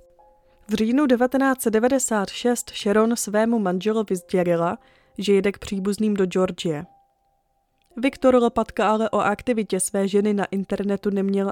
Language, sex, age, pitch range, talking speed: Czech, female, 20-39, 190-240 Hz, 120 wpm